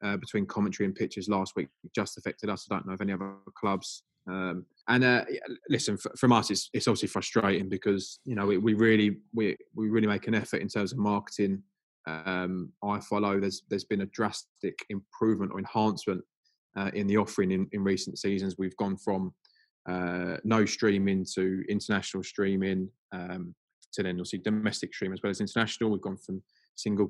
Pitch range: 95-110 Hz